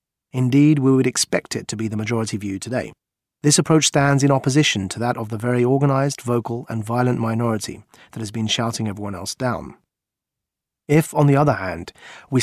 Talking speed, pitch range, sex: 190 wpm, 115-145 Hz, male